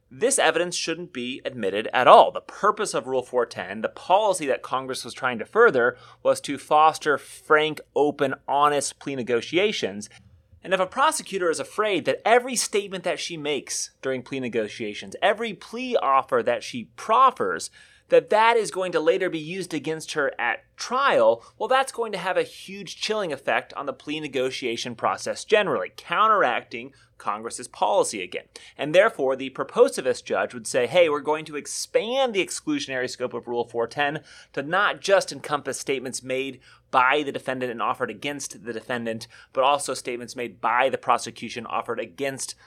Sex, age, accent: male, 30-49, American